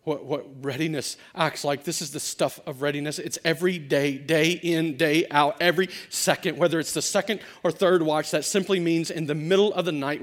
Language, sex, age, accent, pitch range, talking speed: English, male, 40-59, American, 155-200 Hz, 210 wpm